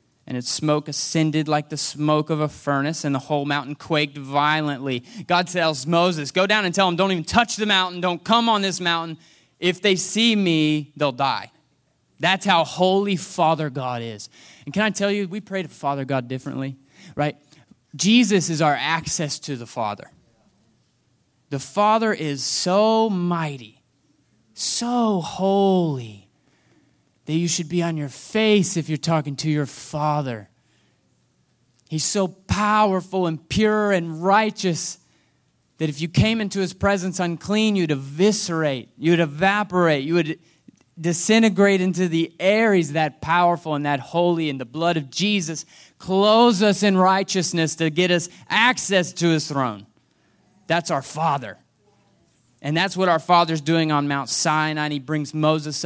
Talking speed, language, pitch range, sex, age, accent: 155 wpm, English, 145-190 Hz, male, 20-39, American